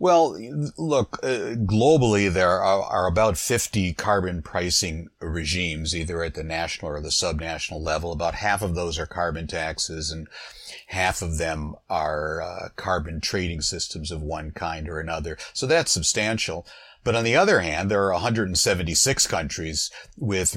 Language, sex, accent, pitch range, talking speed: English, male, American, 85-105 Hz, 160 wpm